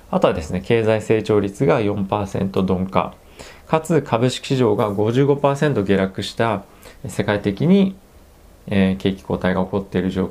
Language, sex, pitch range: Japanese, male, 95-125 Hz